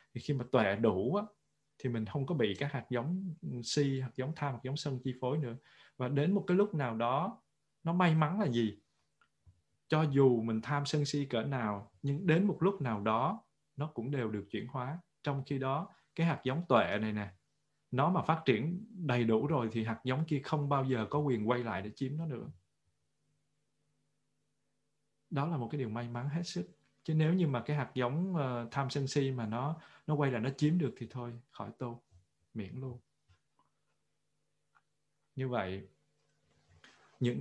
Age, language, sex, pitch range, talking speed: 20-39, Vietnamese, male, 115-150 Hz, 195 wpm